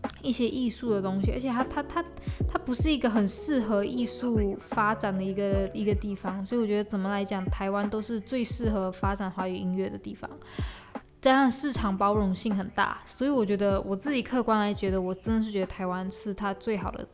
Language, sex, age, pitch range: Chinese, female, 10-29, 195-240 Hz